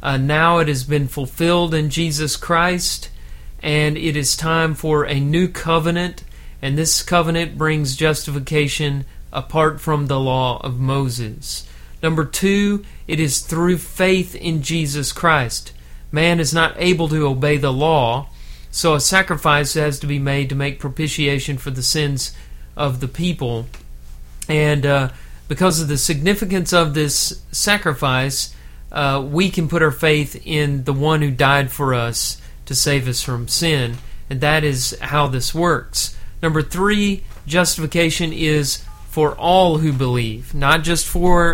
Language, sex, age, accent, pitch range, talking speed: English, male, 40-59, American, 135-165 Hz, 150 wpm